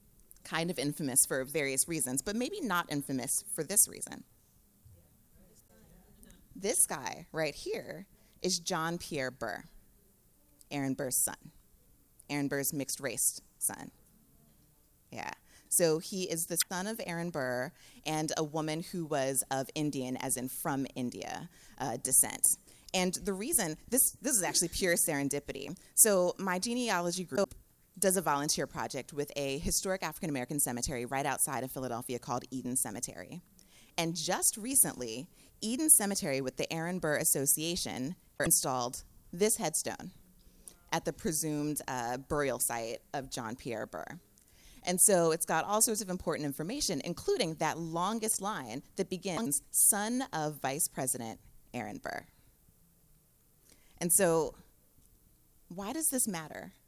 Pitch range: 135-185 Hz